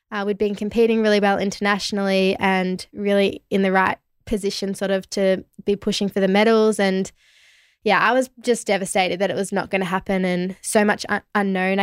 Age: 10-29